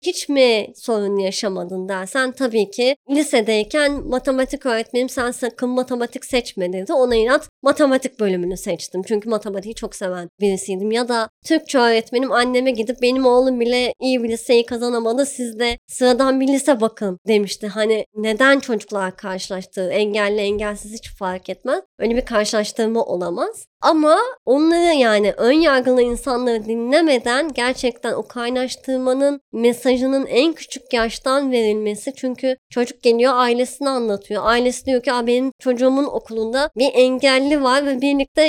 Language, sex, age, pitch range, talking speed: Turkish, male, 30-49, 225-275 Hz, 140 wpm